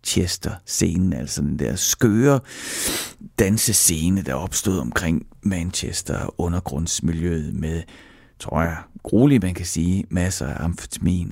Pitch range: 80-110 Hz